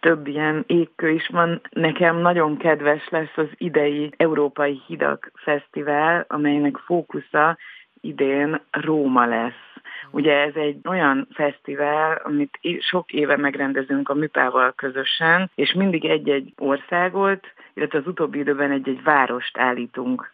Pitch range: 140-165 Hz